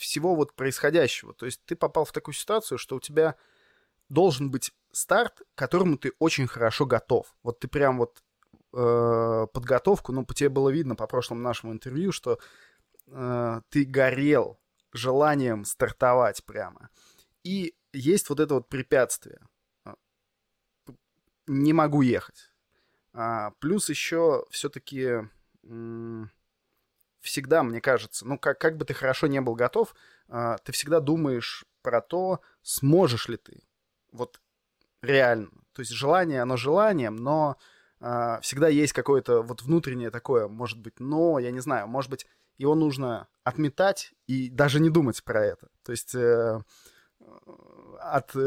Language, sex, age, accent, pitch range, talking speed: Russian, male, 20-39, native, 120-155 Hz, 140 wpm